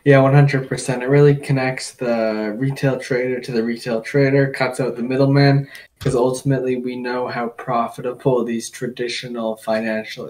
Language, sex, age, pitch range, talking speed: English, male, 10-29, 115-135 Hz, 145 wpm